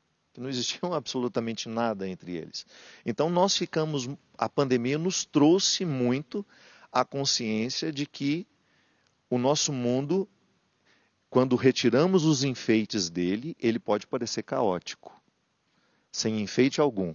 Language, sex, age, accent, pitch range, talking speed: Portuguese, male, 50-69, Brazilian, 100-150 Hz, 115 wpm